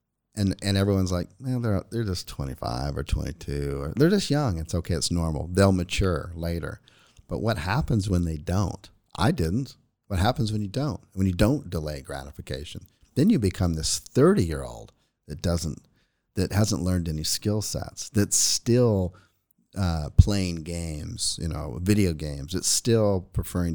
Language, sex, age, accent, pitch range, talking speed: English, male, 40-59, American, 85-110 Hz, 170 wpm